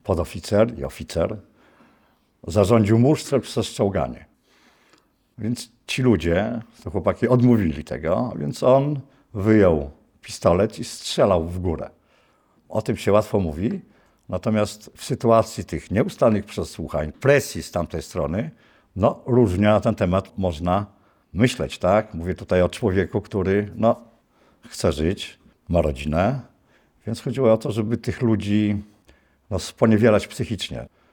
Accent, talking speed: native, 125 wpm